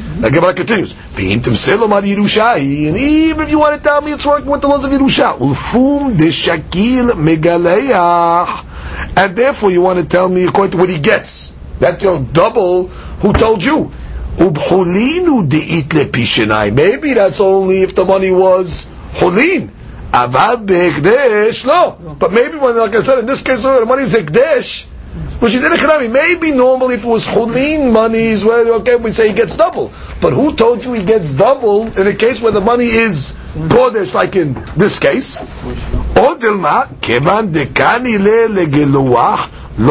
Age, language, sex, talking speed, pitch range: 50-69, English, male, 145 wpm, 180-265 Hz